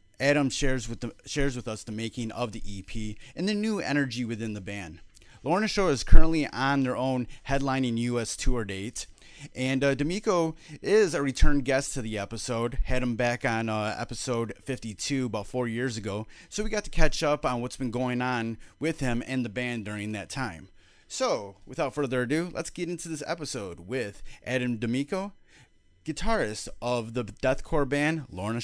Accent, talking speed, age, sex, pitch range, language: American, 180 wpm, 30-49, male, 115-140 Hz, English